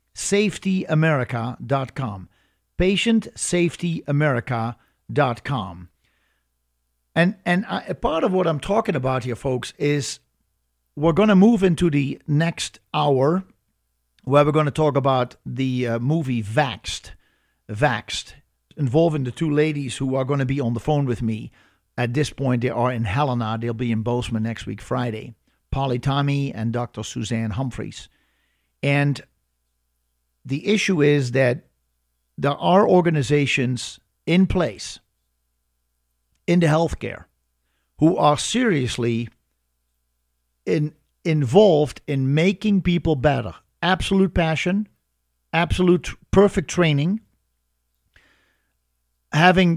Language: English